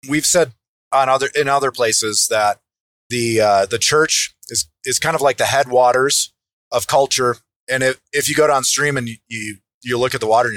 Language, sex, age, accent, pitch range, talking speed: English, male, 30-49, American, 120-155 Hz, 205 wpm